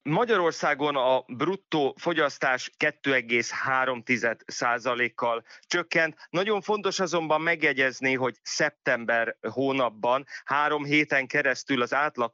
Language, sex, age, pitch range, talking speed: Hungarian, male, 30-49, 125-150 Hz, 90 wpm